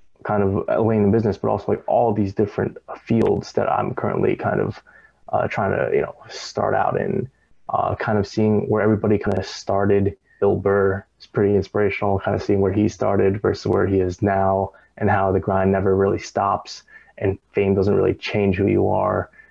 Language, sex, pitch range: English, male, 100-105 Hz